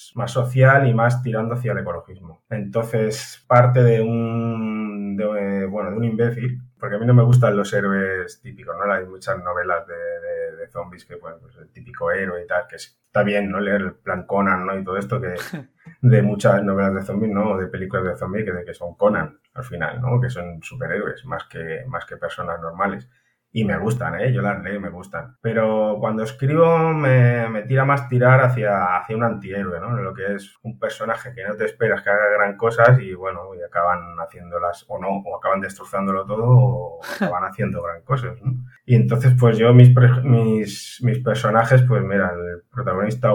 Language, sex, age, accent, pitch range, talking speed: Spanish, male, 20-39, Spanish, 95-125 Hz, 200 wpm